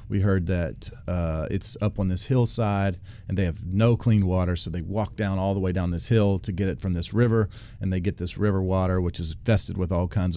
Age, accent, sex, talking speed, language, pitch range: 40-59, American, male, 250 wpm, English, 90-110 Hz